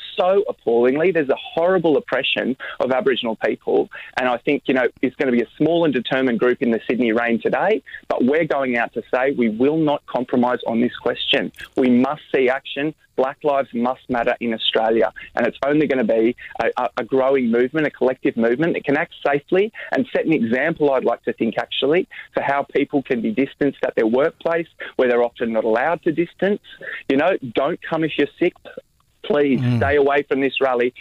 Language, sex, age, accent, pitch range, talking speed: English, male, 20-39, Australian, 120-155 Hz, 205 wpm